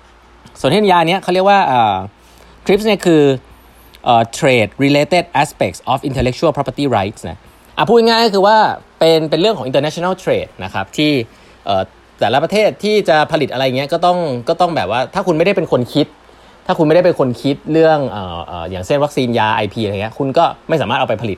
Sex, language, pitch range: male, Thai, 115-170 Hz